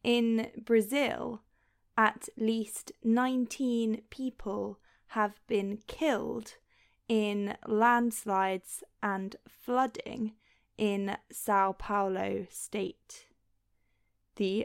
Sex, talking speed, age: female, 75 wpm, 10-29